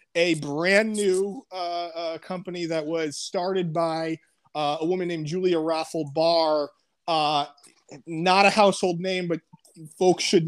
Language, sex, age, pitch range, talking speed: English, male, 30-49, 155-180 Hz, 145 wpm